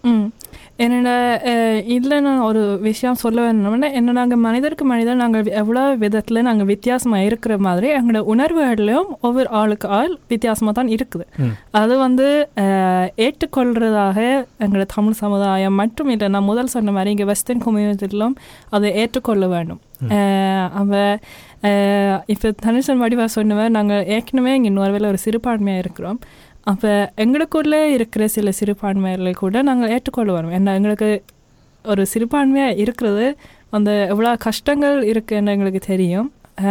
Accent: native